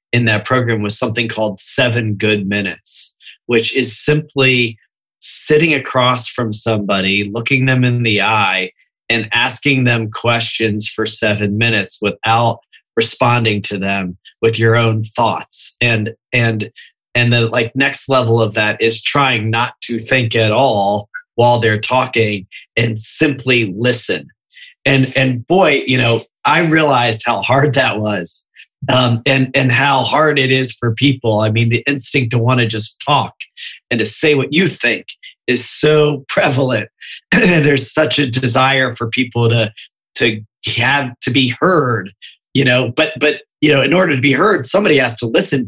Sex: male